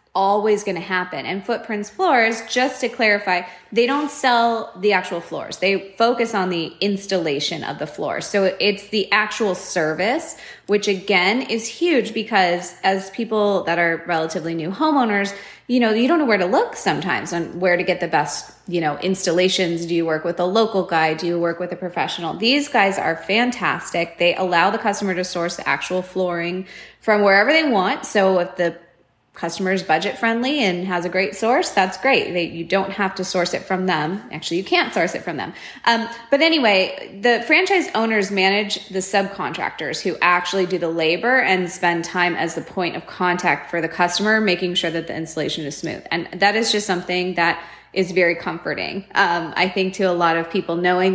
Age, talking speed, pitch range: 20-39, 195 wpm, 175-215 Hz